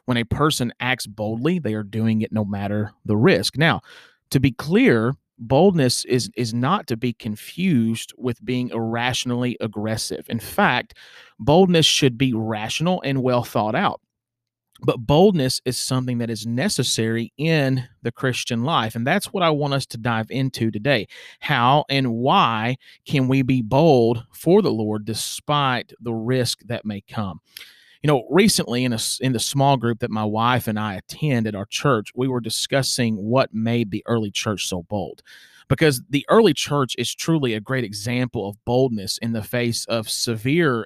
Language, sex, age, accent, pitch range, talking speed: English, male, 40-59, American, 115-135 Hz, 175 wpm